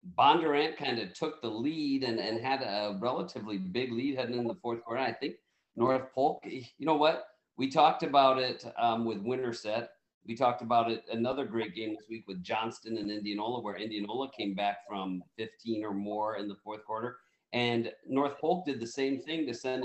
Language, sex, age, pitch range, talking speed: English, male, 50-69, 100-130 Hz, 200 wpm